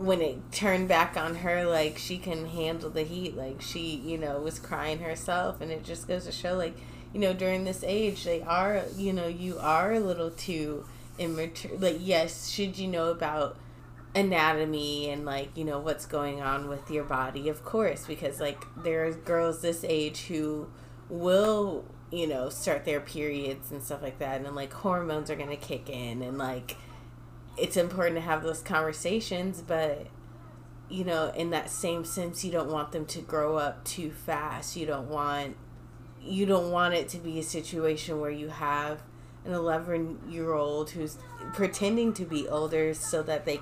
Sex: female